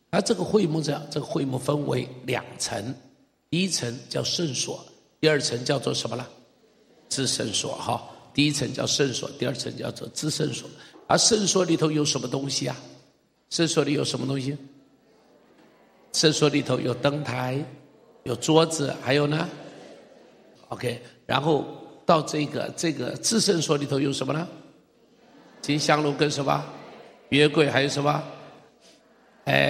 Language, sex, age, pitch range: Chinese, male, 50-69, 130-160 Hz